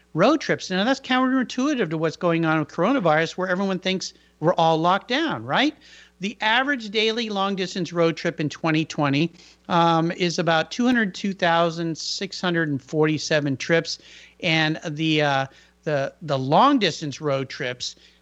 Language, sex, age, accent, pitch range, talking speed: English, male, 50-69, American, 155-220 Hz, 130 wpm